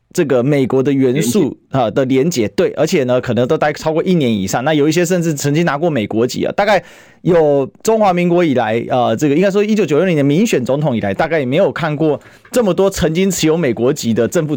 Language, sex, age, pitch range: Chinese, male, 30-49, 125-180 Hz